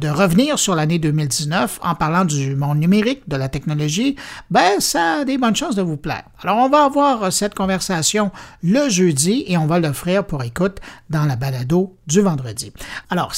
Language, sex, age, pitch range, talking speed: French, male, 60-79, 155-225 Hz, 190 wpm